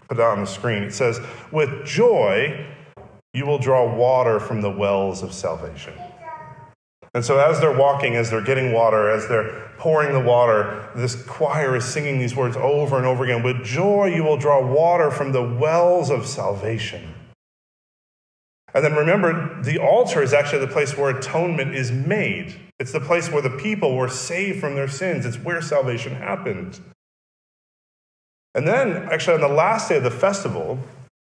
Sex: male